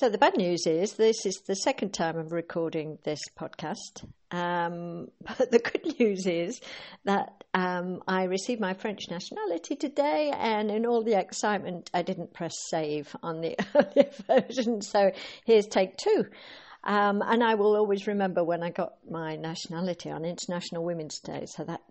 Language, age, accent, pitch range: English, 60-79, British, 165-215 Hz